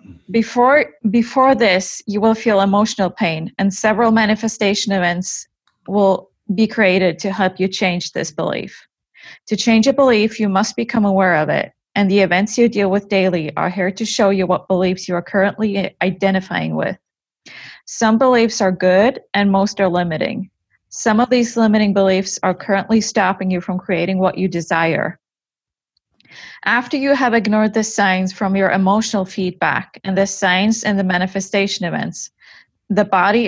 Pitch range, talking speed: 185-220 Hz, 165 wpm